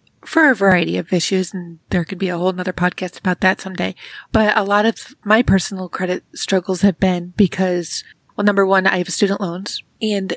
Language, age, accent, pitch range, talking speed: English, 30-49, American, 185-220 Hz, 205 wpm